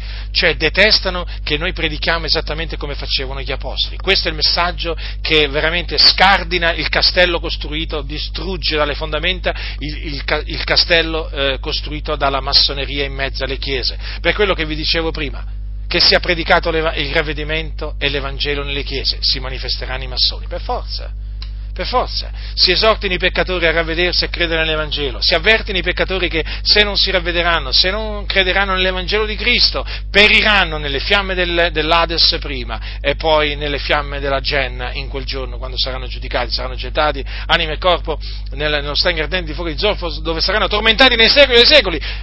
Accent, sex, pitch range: native, male, 135-175 Hz